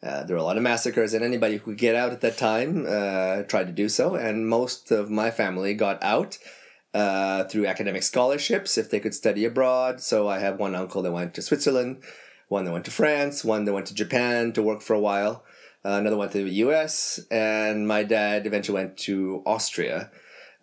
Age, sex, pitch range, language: 30-49, male, 105-125 Hz, English